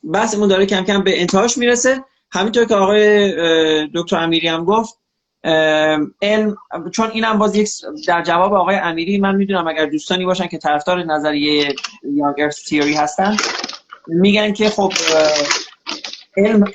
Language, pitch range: Persian, 165-210 Hz